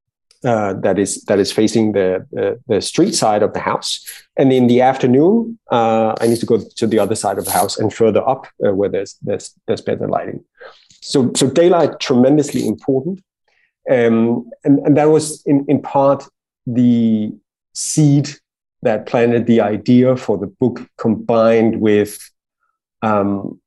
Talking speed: 165 wpm